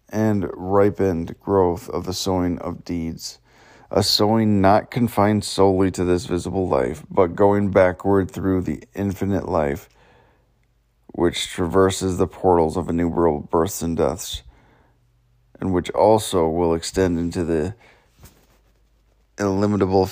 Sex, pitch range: male, 85-105 Hz